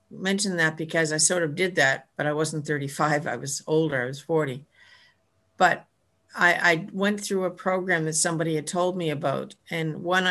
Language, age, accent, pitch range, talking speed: English, 60-79, American, 155-185 Hz, 190 wpm